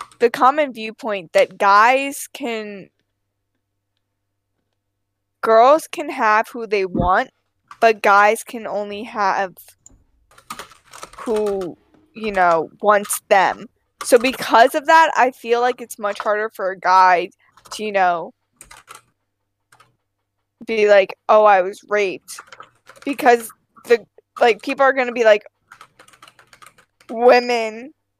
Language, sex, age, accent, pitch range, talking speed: English, female, 10-29, American, 180-230 Hz, 115 wpm